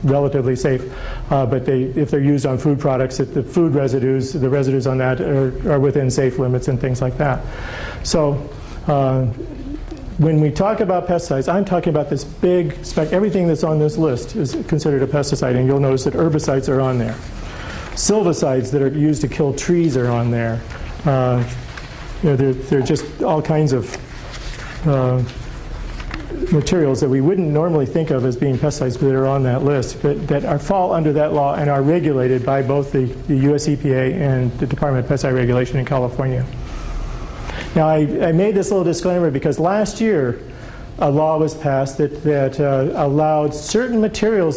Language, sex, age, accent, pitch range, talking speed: English, male, 50-69, American, 130-155 Hz, 180 wpm